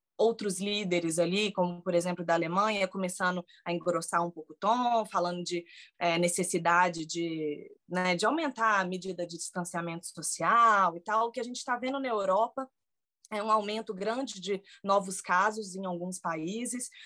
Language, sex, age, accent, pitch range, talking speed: Portuguese, female, 20-39, Brazilian, 180-230 Hz, 160 wpm